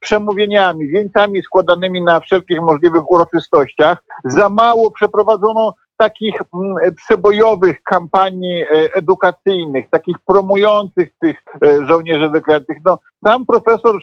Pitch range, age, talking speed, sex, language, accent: 160-200 Hz, 50-69, 95 wpm, male, Polish, native